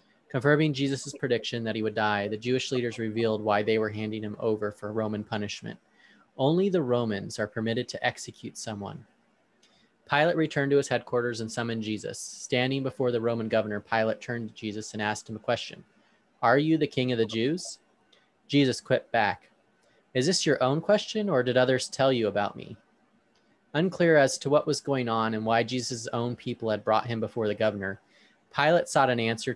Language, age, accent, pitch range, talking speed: English, 20-39, American, 115-145 Hz, 190 wpm